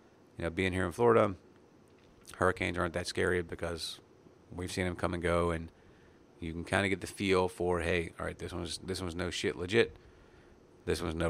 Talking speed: 205 wpm